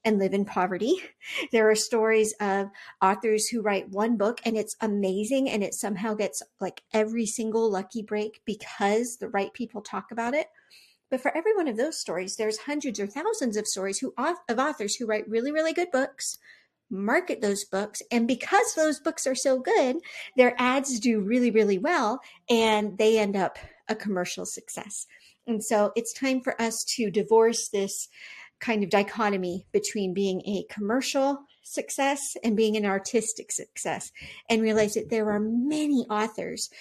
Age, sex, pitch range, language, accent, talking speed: 50-69, female, 205-255 Hz, English, American, 175 wpm